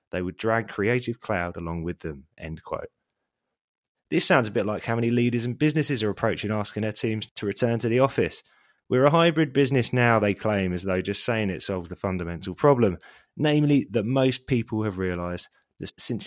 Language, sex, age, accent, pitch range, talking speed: English, male, 20-39, British, 95-125 Hz, 200 wpm